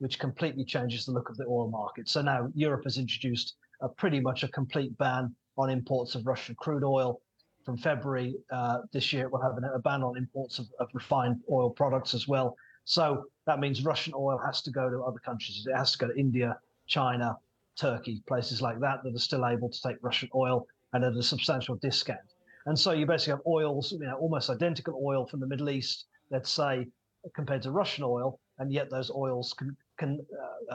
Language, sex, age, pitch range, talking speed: Arabic, male, 30-49, 125-140 Hz, 210 wpm